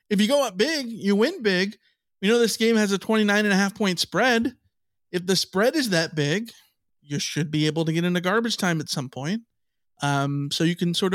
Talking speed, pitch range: 230 wpm, 155-210 Hz